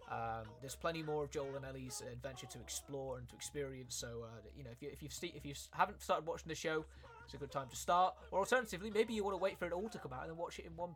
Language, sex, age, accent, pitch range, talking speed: Italian, male, 20-39, British, 145-190 Hz, 300 wpm